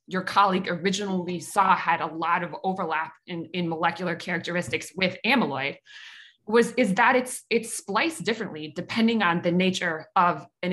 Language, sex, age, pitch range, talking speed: English, female, 20-39, 170-215 Hz, 155 wpm